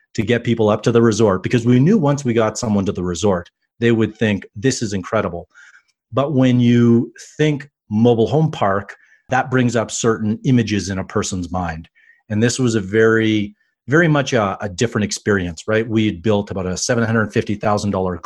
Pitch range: 100-125 Hz